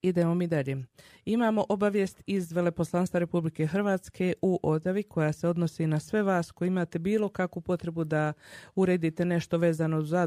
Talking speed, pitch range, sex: 160 wpm, 155-190 Hz, female